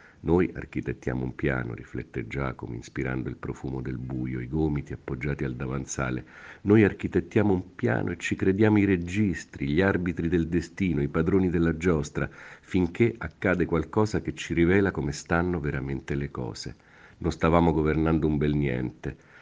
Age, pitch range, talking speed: 50-69, 70-90 Hz, 155 wpm